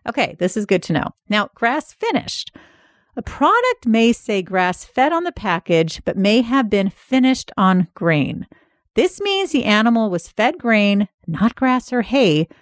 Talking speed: 170 wpm